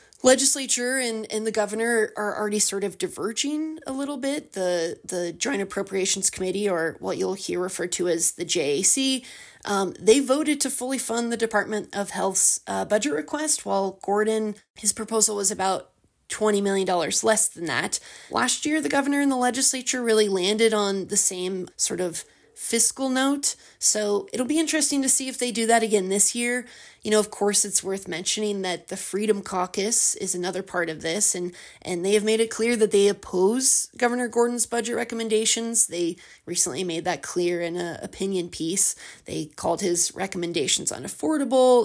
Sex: female